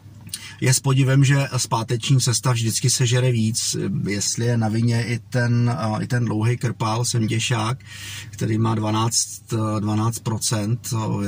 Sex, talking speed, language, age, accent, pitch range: male, 130 wpm, Czech, 30-49, native, 110-125 Hz